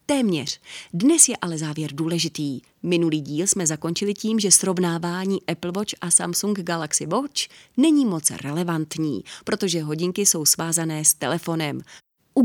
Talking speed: 140 wpm